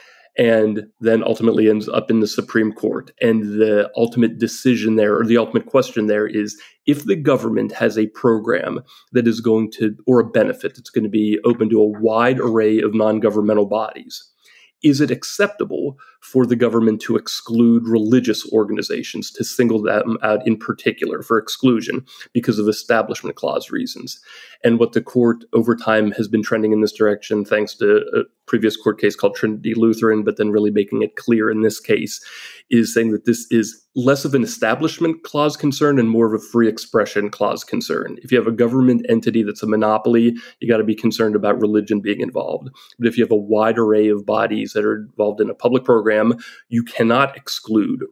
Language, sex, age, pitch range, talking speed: English, male, 30-49, 110-120 Hz, 190 wpm